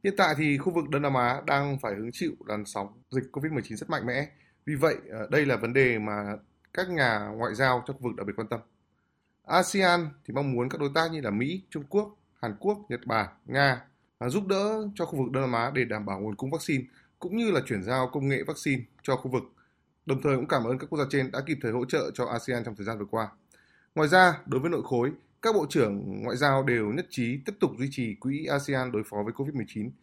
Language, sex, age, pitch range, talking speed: Vietnamese, male, 20-39, 120-155 Hz, 250 wpm